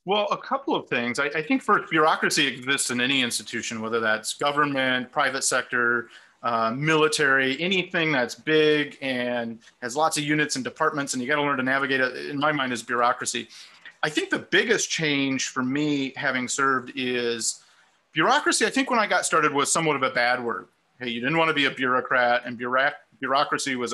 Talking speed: 195 wpm